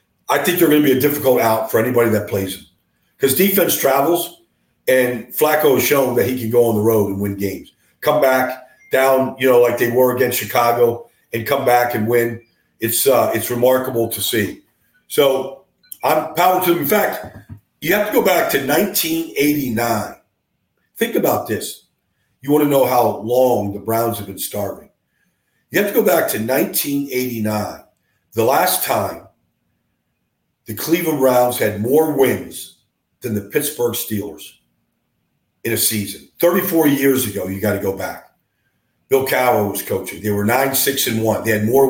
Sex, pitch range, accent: male, 105-140 Hz, American